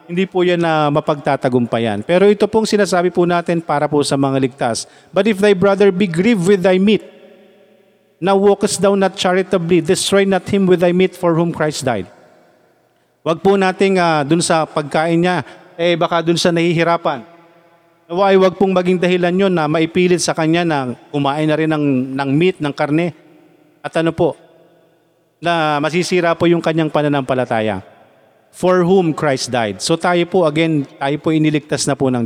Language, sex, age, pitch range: Filipino, male, 40-59, 155-195 Hz